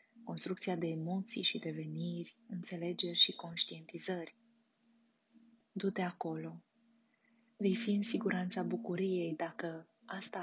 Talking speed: 100 wpm